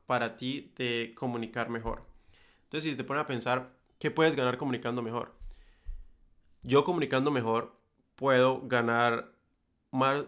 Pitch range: 115-145 Hz